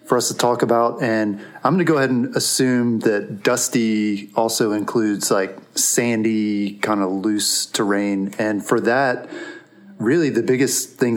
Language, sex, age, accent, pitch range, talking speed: English, male, 30-49, American, 100-115 Hz, 160 wpm